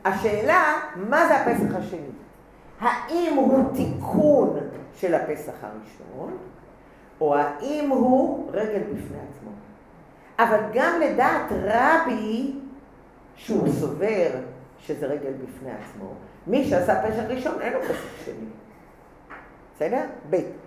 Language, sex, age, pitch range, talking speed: English, female, 50-69, 210-265 Hz, 105 wpm